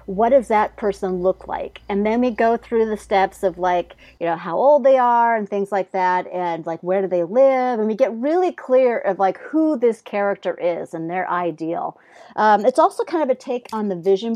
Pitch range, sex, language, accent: 175-210 Hz, female, English, American